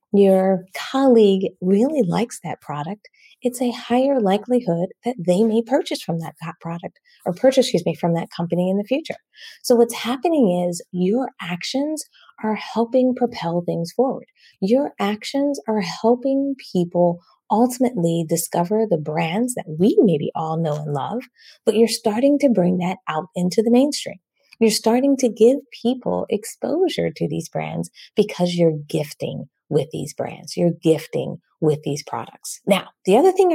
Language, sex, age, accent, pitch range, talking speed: English, female, 30-49, American, 175-250 Hz, 155 wpm